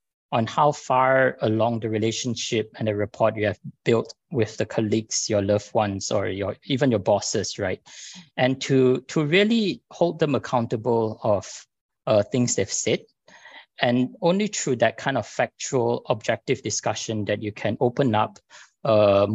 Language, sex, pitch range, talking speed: English, male, 105-130 Hz, 160 wpm